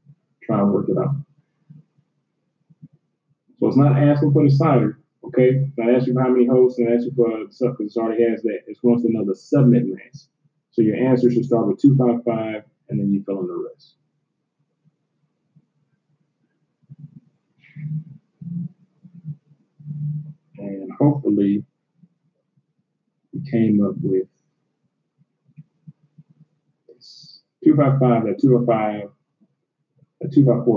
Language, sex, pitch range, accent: English, male, 115-155 Hz, American